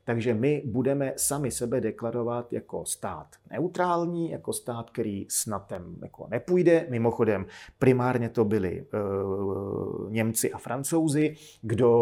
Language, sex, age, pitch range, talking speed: Slovak, male, 30-49, 105-140 Hz, 110 wpm